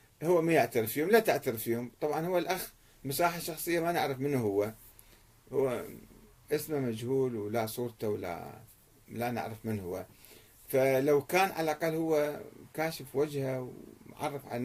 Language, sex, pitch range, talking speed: Arabic, male, 115-150 Hz, 145 wpm